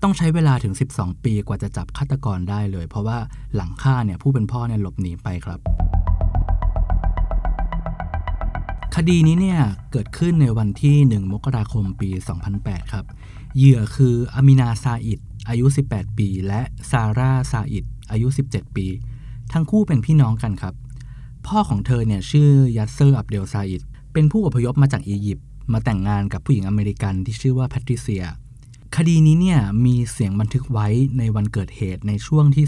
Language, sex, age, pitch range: Thai, male, 20-39, 105-135 Hz